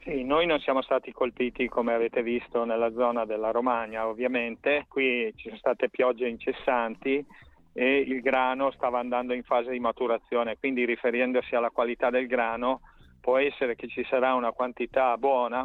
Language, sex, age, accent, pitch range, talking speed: Italian, male, 40-59, native, 115-125 Hz, 165 wpm